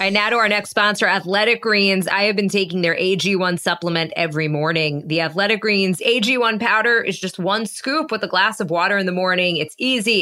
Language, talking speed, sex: English, 215 wpm, female